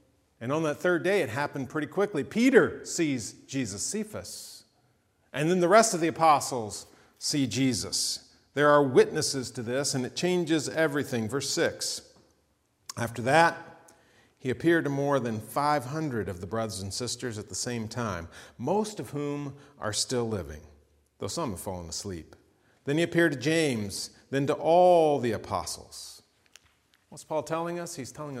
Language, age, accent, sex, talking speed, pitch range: English, 40-59, American, male, 165 wpm, 120-195 Hz